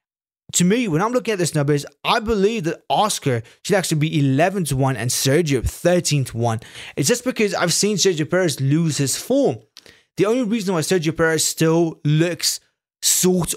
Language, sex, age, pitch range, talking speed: English, male, 20-39, 140-175 Hz, 170 wpm